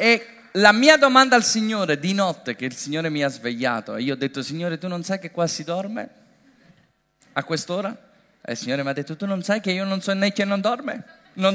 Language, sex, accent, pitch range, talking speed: Italian, male, native, 120-205 Hz, 230 wpm